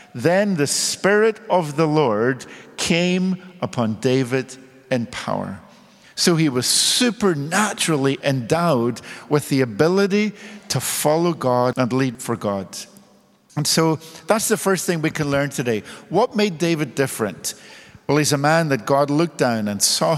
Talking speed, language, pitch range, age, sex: 150 wpm, English, 120-165 Hz, 50-69, male